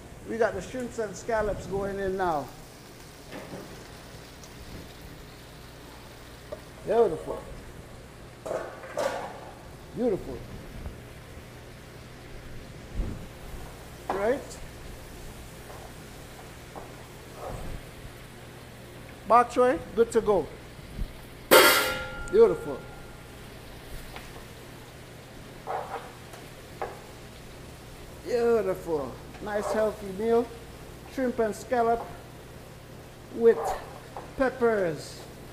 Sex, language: male, English